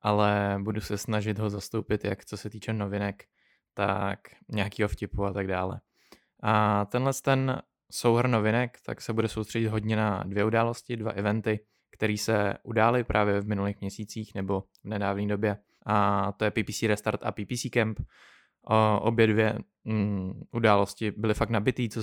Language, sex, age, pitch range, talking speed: Czech, male, 20-39, 100-110 Hz, 165 wpm